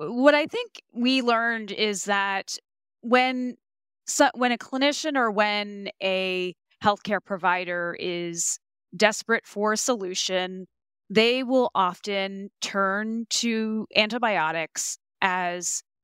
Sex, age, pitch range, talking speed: female, 30-49, 190-235 Hz, 110 wpm